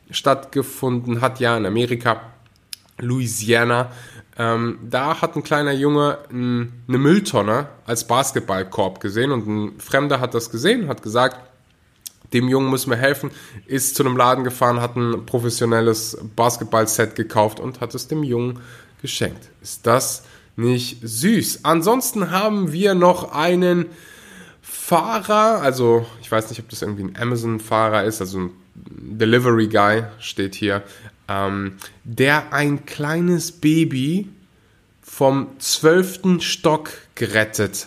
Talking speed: 130 wpm